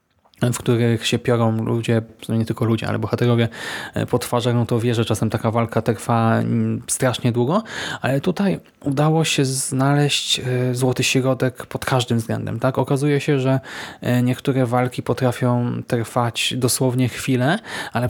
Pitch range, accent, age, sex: 120-140 Hz, native, 20-39, male